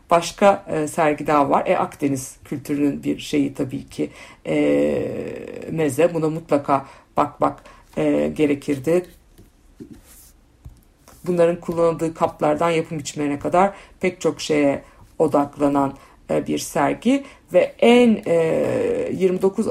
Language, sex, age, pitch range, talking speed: Turkish, female, 60-79, 150-190 Hz, 105 wpm